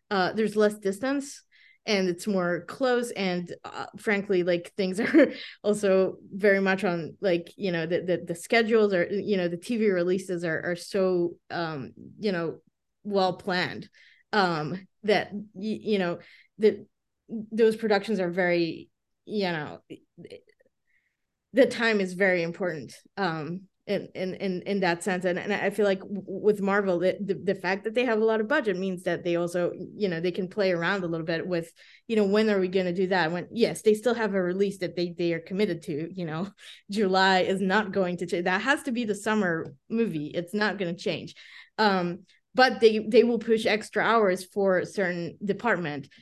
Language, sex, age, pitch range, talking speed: English, female, 20-39, 175-210 Hz, 190 wpm